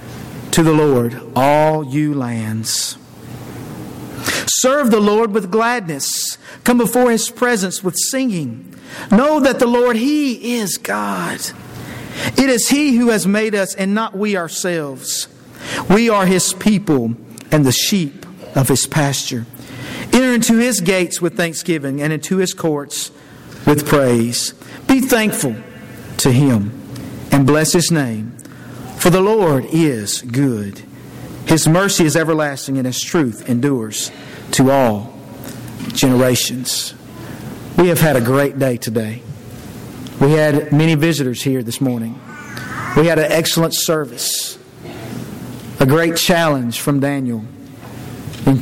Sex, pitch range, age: male, 130-185 Hz, 50-69